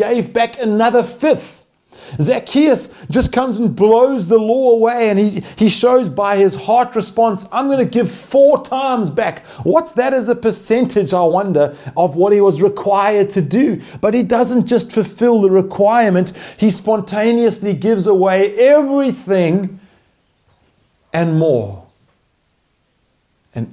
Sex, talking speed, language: male, 140 wpm, English